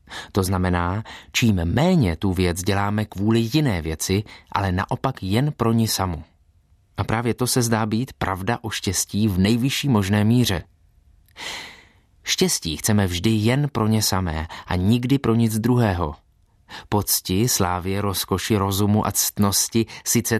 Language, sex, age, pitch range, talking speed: Czech, male, 30-49, 90-120 Hz, 140 wpm